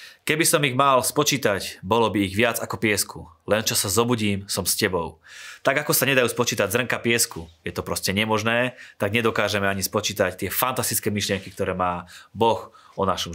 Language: Slovak